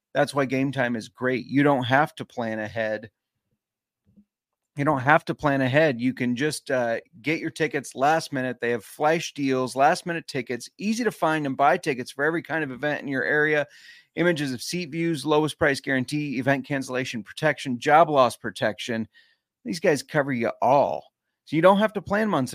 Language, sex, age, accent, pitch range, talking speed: English, male, 30-49, American, 130-165 Hz, 195 wpm